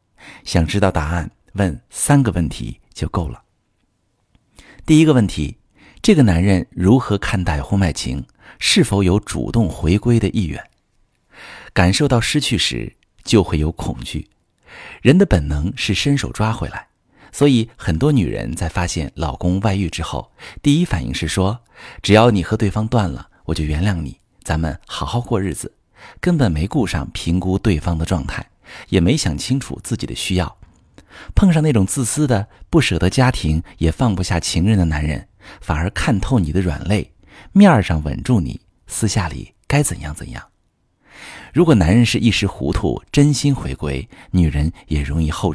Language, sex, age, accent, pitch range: Chinese, male, 50-69, native, 80-115 Hz